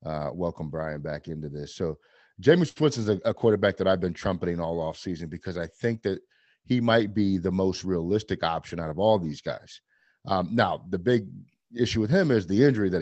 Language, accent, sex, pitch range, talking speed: English, American, male, 85-115 Hz, 205 wpm